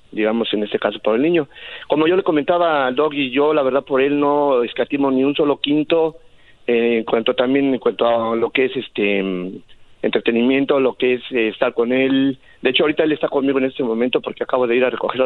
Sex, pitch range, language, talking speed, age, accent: male, 120-155 Hz, Spanish, 235 wpm, 50-69, Mexican